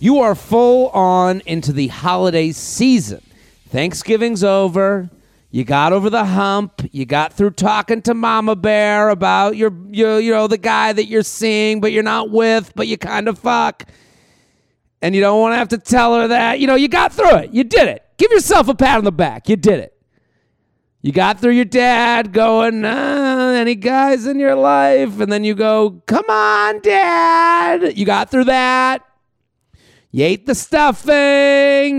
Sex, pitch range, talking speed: male, 195-265 Hz, 180 wpm